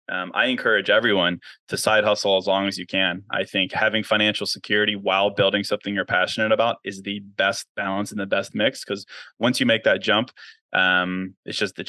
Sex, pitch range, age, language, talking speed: male, 95-115 Hz, 20-39, English, 205 wpm